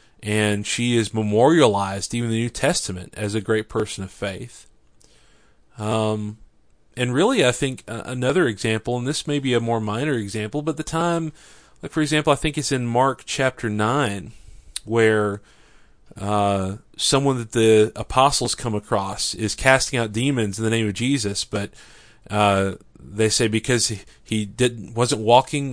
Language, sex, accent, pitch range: English, male, American, 105-130 Hz